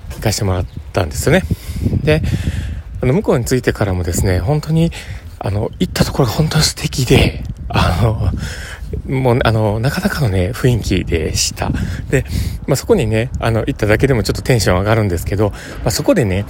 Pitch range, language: 95-135 Hz, Japanese